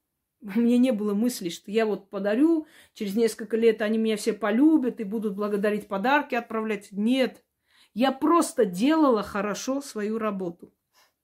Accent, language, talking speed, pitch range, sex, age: native, Russian, 145 wpm, 205-255 Hz, female, 40-59